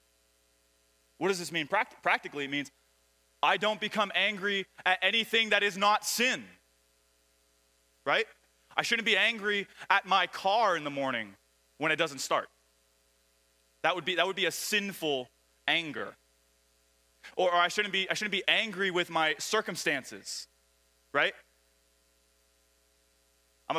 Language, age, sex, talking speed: English, 20-39, male, 130 wpm